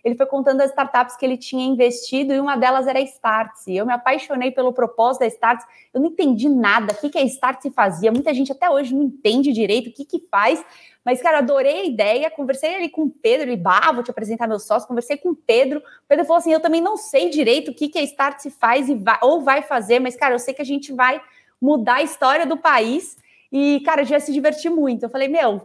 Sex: female